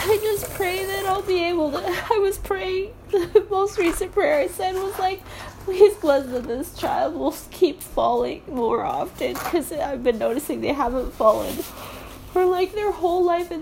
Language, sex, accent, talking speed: English, female, American, 185 wpm